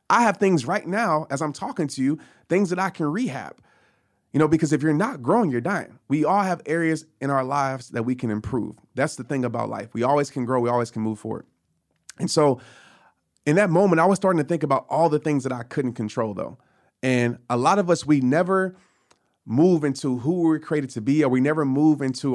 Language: English